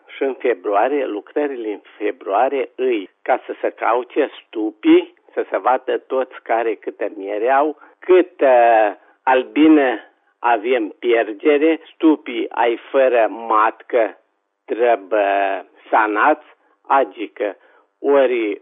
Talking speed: 105 wpm